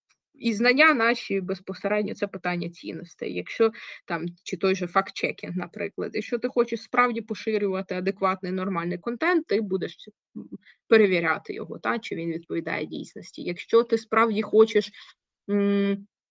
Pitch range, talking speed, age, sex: 190-240 Hz, 135 wpm, 20-39, female